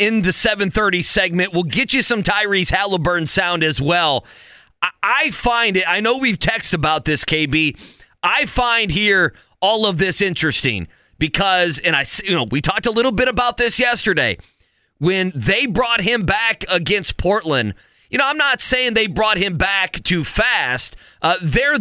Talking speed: 175 wpm